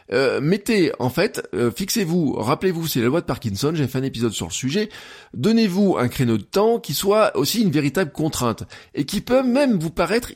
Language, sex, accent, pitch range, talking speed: French, male, French, 130-190 Hz, 210 wpm